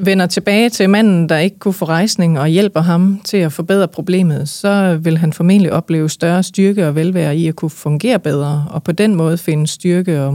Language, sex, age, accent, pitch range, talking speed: Danish, female, 30-49, native, 150-180 Hz, 215 wpm